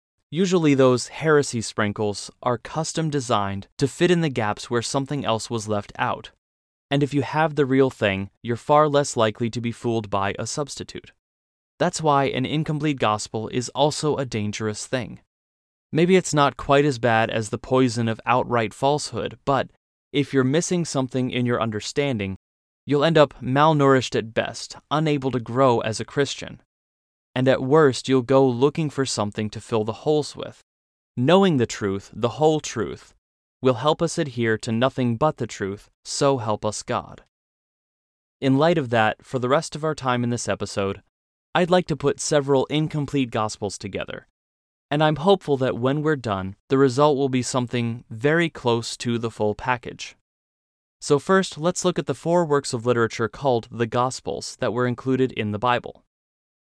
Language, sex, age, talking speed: English, male, 20-39, 175 wpm